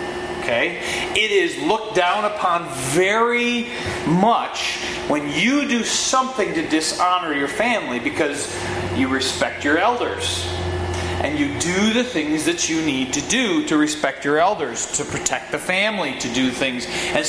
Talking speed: 150 wpm